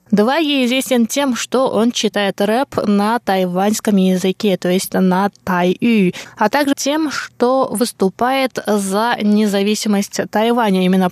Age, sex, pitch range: 20-39, female, 205-265 Hz